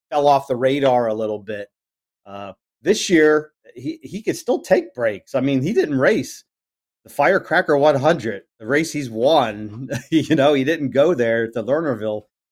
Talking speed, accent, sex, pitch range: 175 wpm, American, male, 110-130 Hz